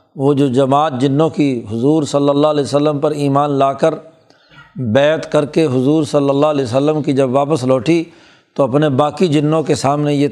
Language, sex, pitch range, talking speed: Urdu, male, 140-160 Hz, 190 wpm